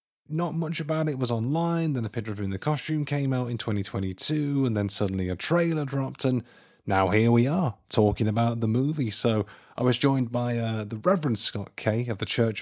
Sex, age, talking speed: male, 30-49, 220 wpm